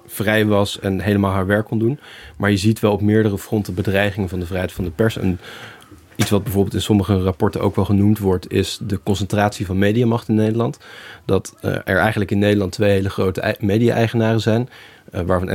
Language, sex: Dutch, male